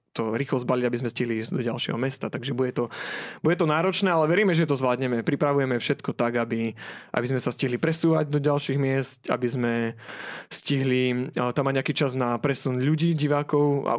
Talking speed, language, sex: 195 wpm, Slovak, male